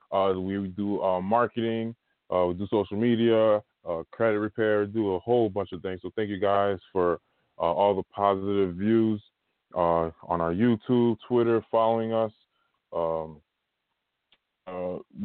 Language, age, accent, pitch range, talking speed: English, 20-39, American, 95-115 Hz, 150 wpm